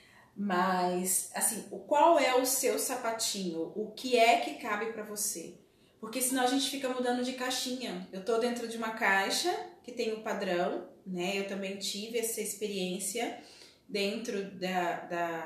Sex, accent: female, Brazilian